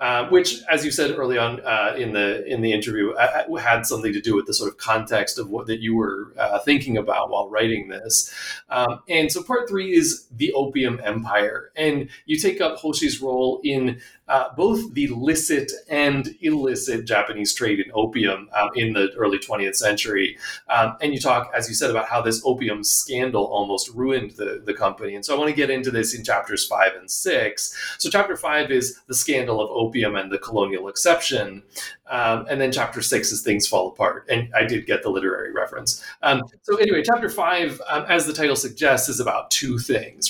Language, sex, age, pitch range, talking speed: English, male, 30-49, 115-155 Hz, 205 wpm